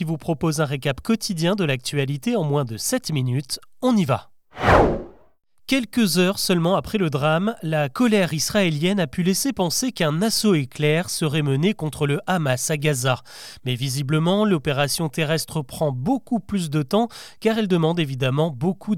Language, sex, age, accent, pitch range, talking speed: French, male, 30-49, French, 145-195 Hz, 165 wpm